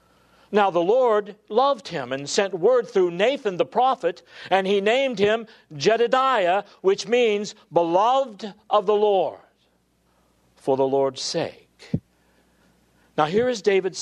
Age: 60-79